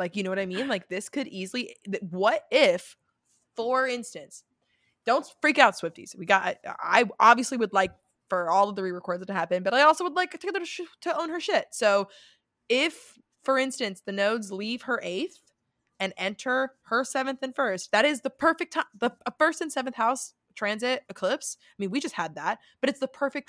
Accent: American